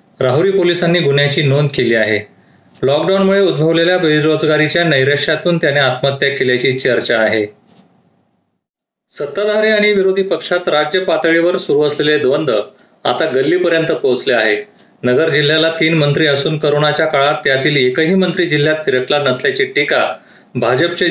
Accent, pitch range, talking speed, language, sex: native, 135-170 Hz, 120 wpm, Marathi, male